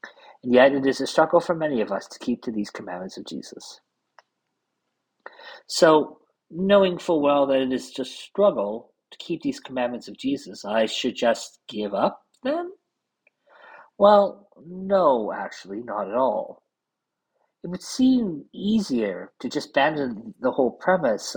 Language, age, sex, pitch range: English, 50-69, male, 130-195 Hz